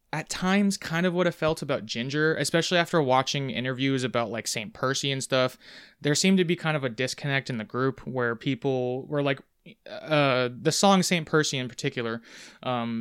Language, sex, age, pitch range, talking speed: English, male, 20-39, 125-160 Hz, 195 wpm